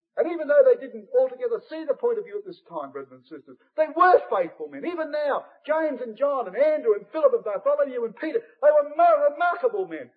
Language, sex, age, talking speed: English, male, 50-69, 230 wpm